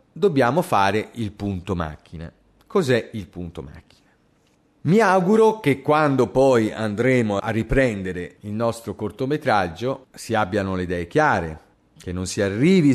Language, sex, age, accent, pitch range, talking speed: Italian, male, 40-59, native, 110-160 Hz, 135 wpm